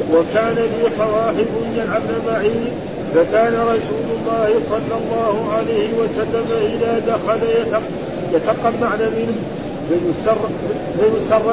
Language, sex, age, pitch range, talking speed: Arabic, male, 50-69, 220-230 Hz, 95 wpm